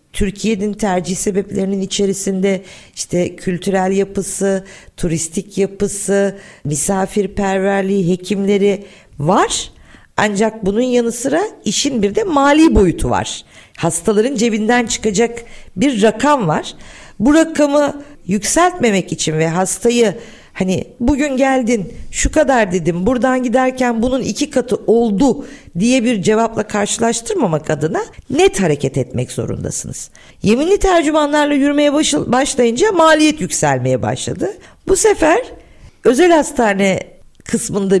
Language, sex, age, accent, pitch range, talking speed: Turkish, female, 50-69, native, 190-295 Hz, 105 wpm